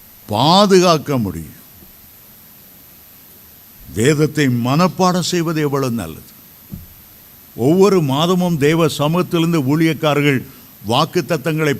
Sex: male